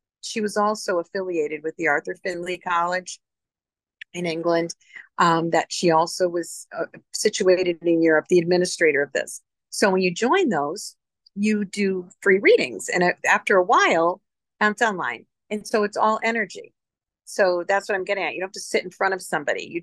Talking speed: 185 wpm